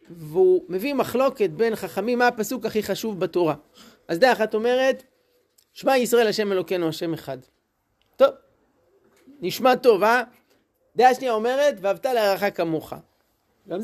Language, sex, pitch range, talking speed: Hebrew, male, 180-250 Hz, 135 wpm